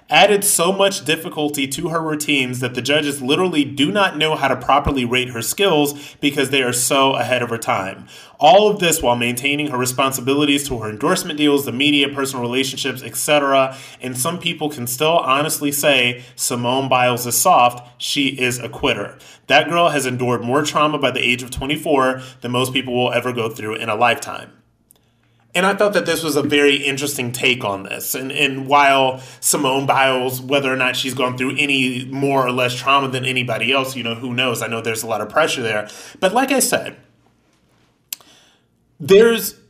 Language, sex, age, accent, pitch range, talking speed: English, male, 30-49, American, 125-155 Hz, 195 wpm